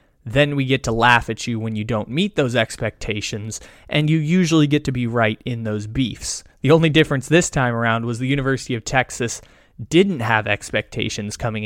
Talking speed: 195 wpm